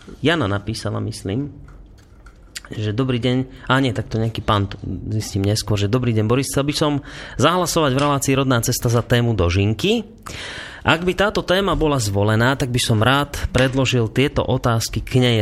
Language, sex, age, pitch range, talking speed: Slovak, male, 30-49, 110-135 Hz, 170 wpm